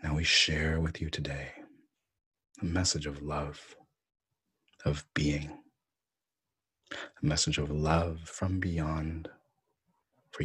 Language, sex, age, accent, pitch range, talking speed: English, male, 30-49, American, 75-80 Hz, 110 wpm